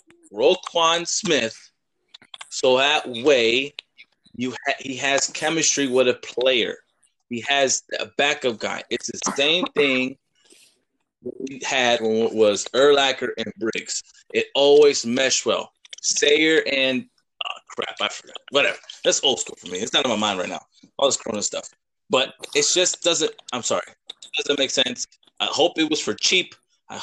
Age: 20-39